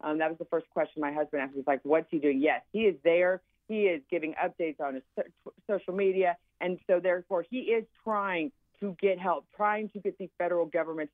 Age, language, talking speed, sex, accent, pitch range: 40-59, English, 235 wpm, female, American, 170-225 Hz